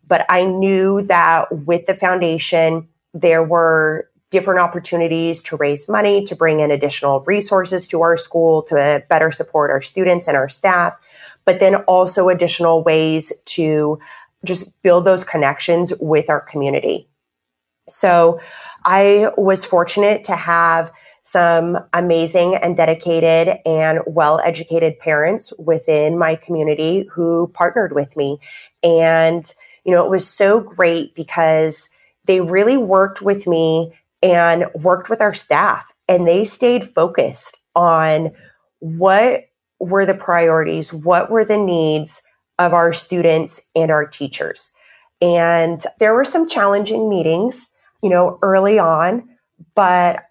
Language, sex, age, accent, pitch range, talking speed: English, female, 30-49, American, 160-190 Hz, 130 wpm